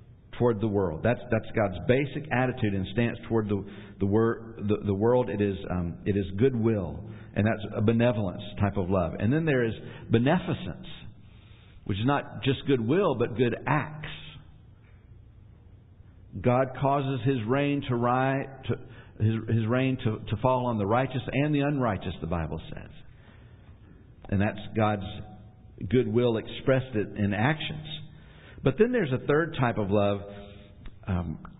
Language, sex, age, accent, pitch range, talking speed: English, male, 50-69, American, 95-125 Hz, 155 wpm